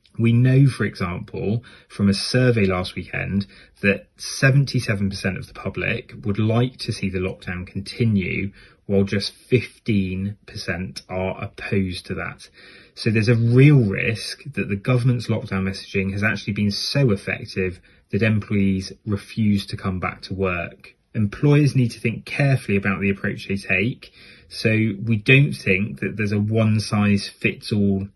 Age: 30-49